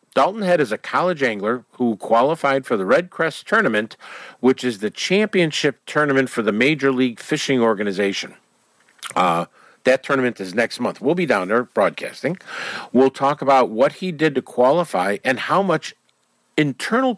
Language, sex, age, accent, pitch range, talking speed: English, male, 50-69, American, 110-150 Hz, 165 wpm